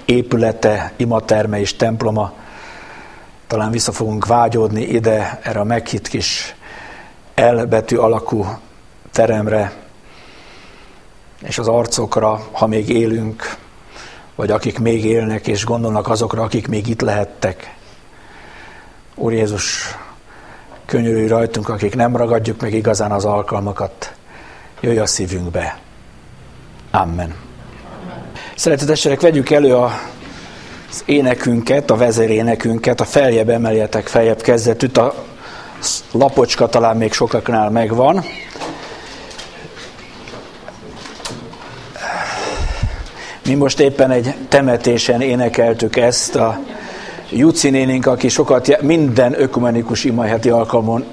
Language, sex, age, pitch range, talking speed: Hungarian, male, 60-79, 110-120 Hz, 95 wpm